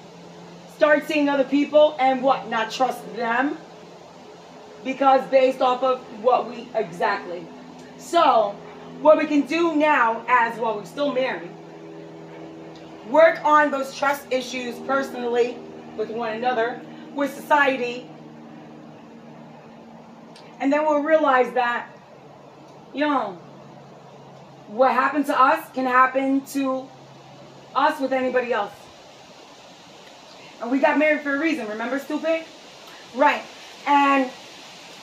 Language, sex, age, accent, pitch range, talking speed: English, female, 30-49, American, 245-290 Hz, 115 wpm